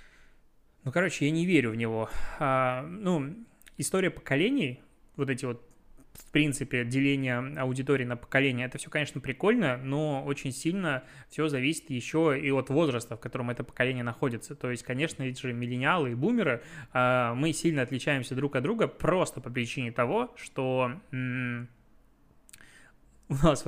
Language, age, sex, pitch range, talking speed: Russian, 20-39, male, 125-150 Hz, 155 wpm